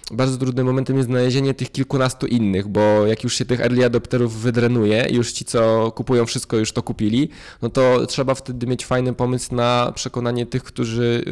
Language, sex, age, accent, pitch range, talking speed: Polish, male, 20-39, native, 105-125 Hz, 185 wpm